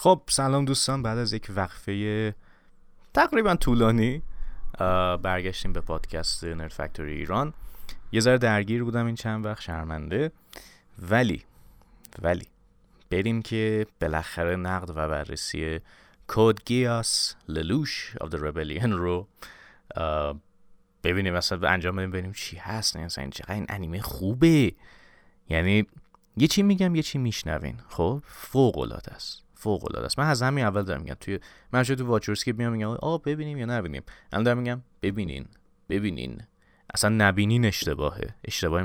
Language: Persian